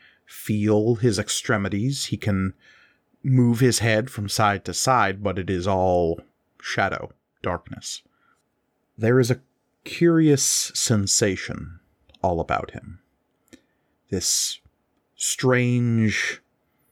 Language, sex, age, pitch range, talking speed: English, male, 30-49, 95-120 Hz, 100 wpm